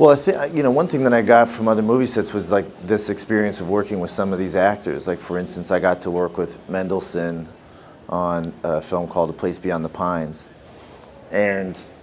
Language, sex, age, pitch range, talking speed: English, male, 30-49, 90-105 Hz, 210 wpm